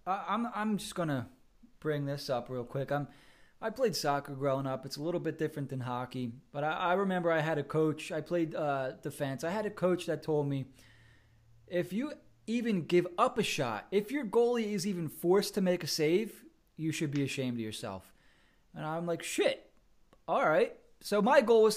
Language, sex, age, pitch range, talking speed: English, male, 20-39, 130-185 Hz, 205 wpm